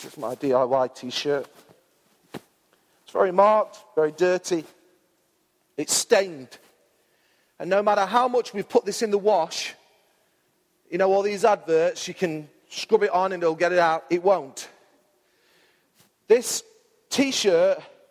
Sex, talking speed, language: male, 140 wpm, English